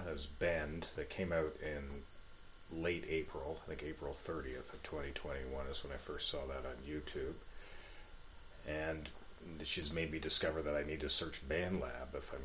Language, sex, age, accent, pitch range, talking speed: English, male, 40-59, American, 70-85 Hz, 170 wpm